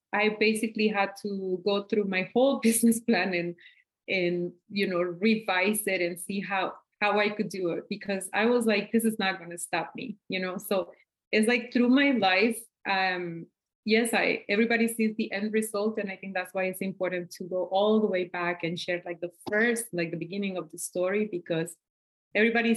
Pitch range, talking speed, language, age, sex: 180-220 Hz, 205 wpm, English, 30-49, female